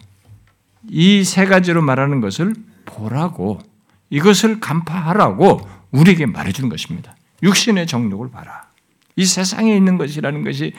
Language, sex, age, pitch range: Korean, male, 60-79, 150-225 Hz